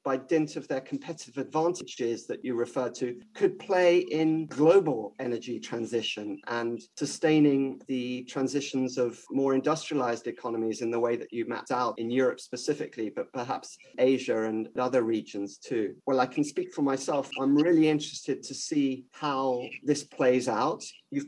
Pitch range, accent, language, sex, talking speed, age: 120-150 Hz, British, English, male, 160 wpm, 40-59